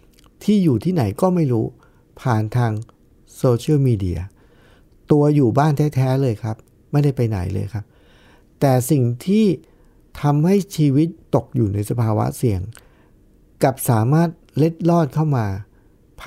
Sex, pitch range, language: male, 105-145 Hz, Thai